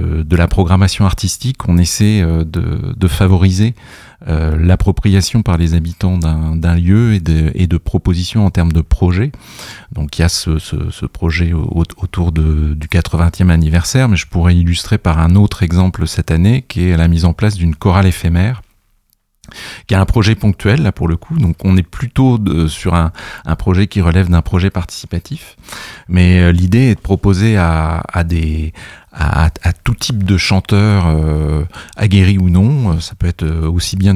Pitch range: 85-100 Hz